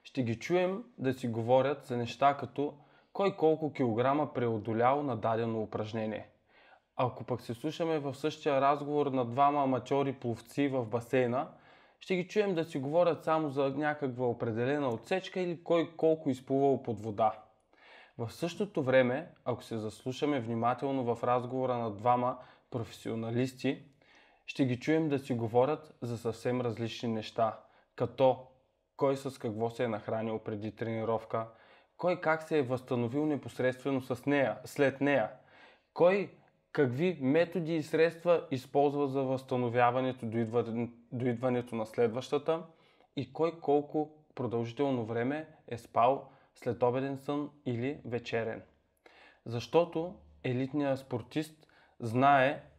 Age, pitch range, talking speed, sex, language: 20-39, 120-150 Hz, 130 wpm, male, Bulgarian